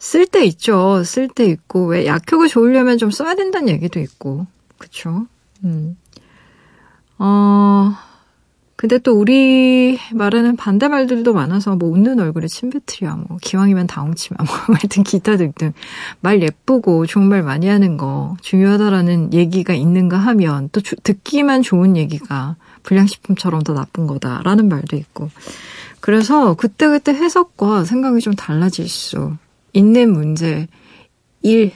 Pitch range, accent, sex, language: 170-235 Hz, native, female, Korean